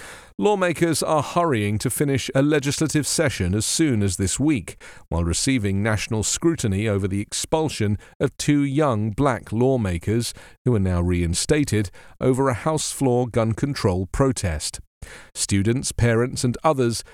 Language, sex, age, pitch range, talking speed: English, male, 40-59, 100-140 Hz, 140 wpm